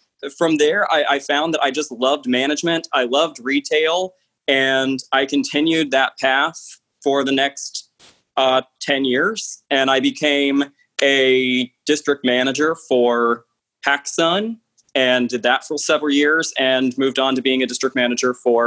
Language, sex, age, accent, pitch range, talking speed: English, male, 20-39, American, 125-145 Hz, 150 wpm